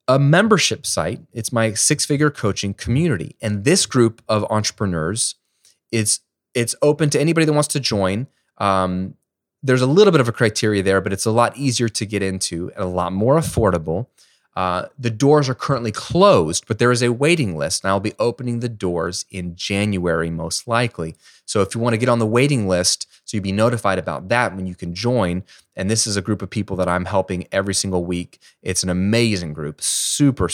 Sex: male